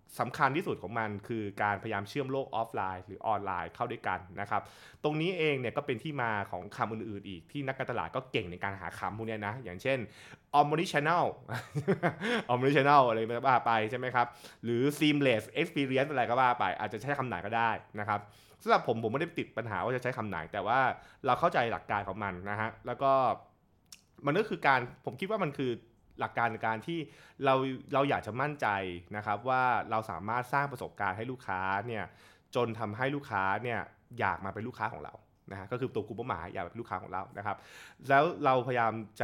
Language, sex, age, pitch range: Thai, male, 20-39, 105-135 Hz